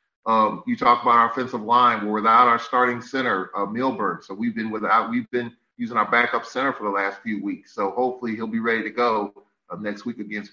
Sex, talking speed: male, 230 wpm